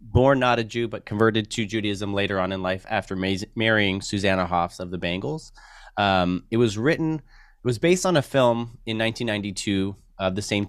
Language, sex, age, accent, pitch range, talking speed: English, male, 30-49, American, 95-115 Hz, 190 wpm